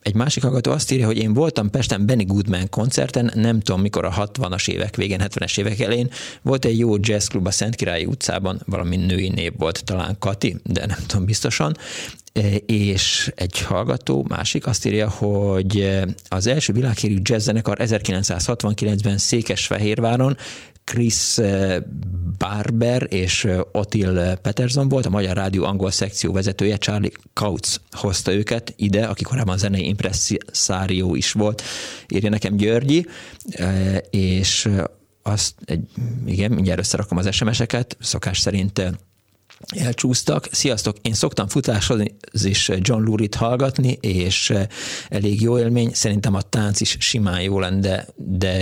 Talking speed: 135 wpm